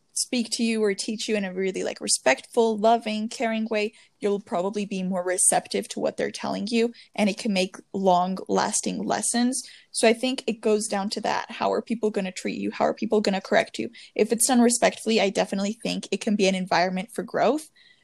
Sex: female